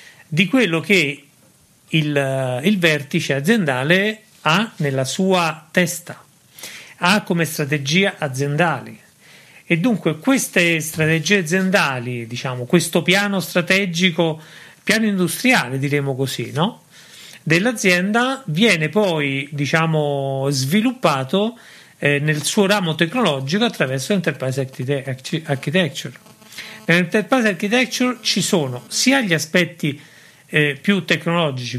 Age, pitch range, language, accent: 40-59, 145-190 Hz, Italian, native